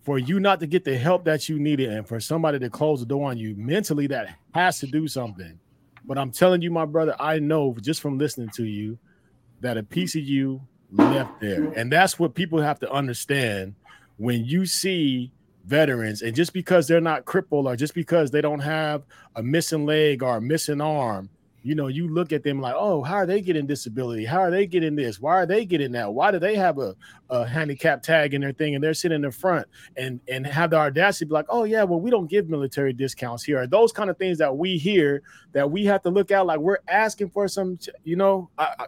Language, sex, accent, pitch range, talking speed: English, male, American, 135-170 Hz, 235 wpm